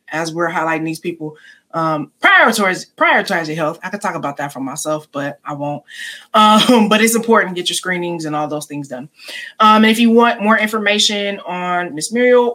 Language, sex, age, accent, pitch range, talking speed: English, female, 20-39, American, 165-225 Hz, 205 wpm